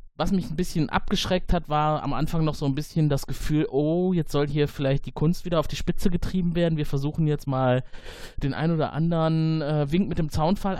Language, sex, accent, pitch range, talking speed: German, male, German, 125-155 Hz, 230 wpm